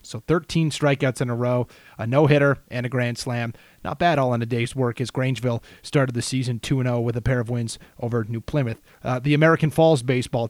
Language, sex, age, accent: English, male, 30-49, American